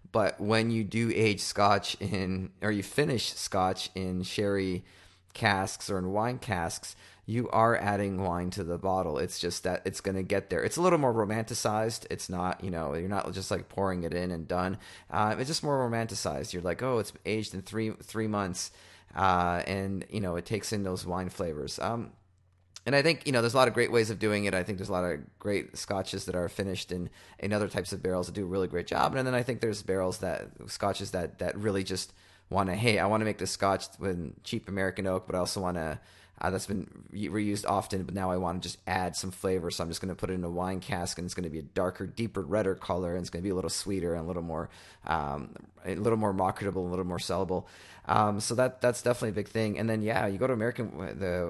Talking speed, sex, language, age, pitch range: 245 wpm, male, English, 30-49, 90-110 Hz